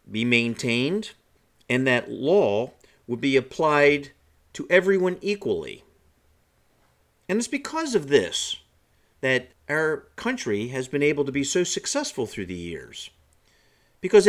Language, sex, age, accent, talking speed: English, male, 50-69, American, 125 wpm